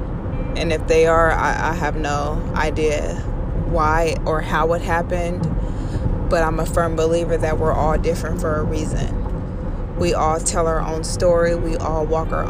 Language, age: English, 20-39